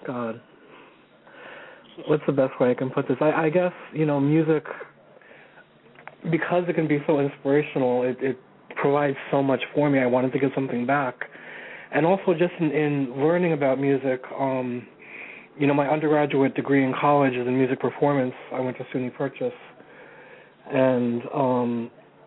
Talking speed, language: 165 wpm, English